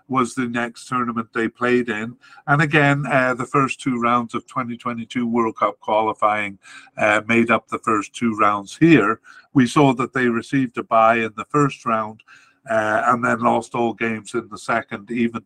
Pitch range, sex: 115-135 Hz, male